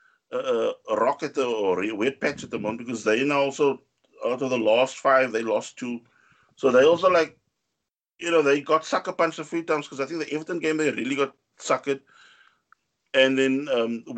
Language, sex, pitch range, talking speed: English, male, 125-155 Hz, 205 wpm